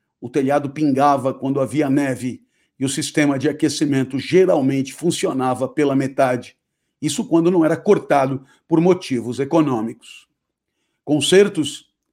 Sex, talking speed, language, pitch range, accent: male, 120 wpm, Portuguese, 135-170 Hz, Brazilian